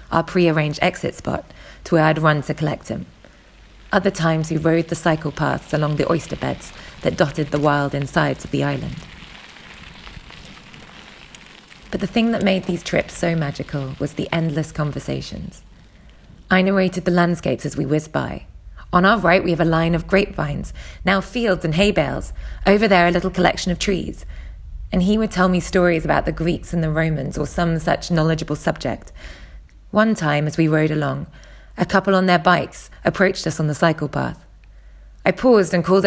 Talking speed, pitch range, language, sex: 185 wpm, 150-185 Hz, English, female